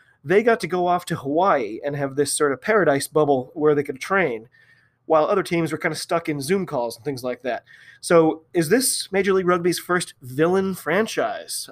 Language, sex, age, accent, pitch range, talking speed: English, male, 30-49, American, 150-185 Hz, 210 wpm